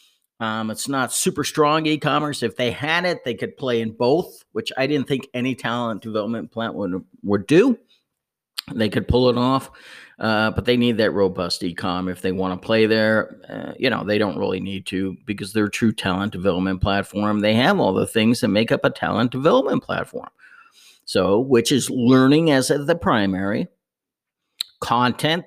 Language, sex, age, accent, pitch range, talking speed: English, male, 50-69, American, 100-130 Hz, 190 wpm